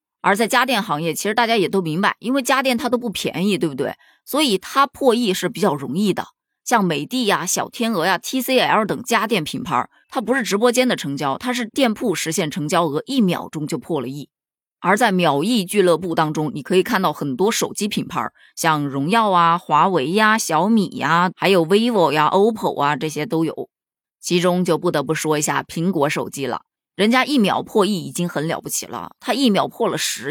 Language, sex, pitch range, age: Chinese, female, 170-240 Hz, 20-39